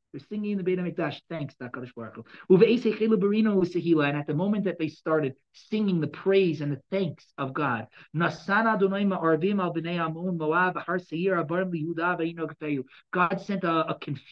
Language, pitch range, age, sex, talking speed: English, 160-220 Hz, 30-49, male, 120 wpm